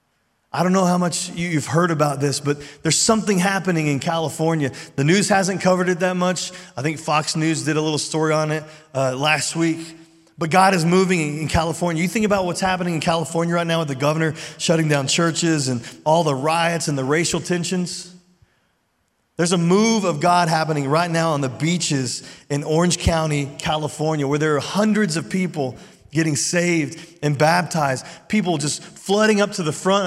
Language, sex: English, male